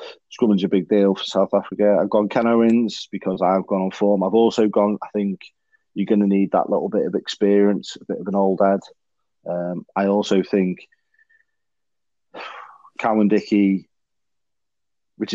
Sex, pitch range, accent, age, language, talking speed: male, 95-110 Hz, British, 30-49, English, 165 wpm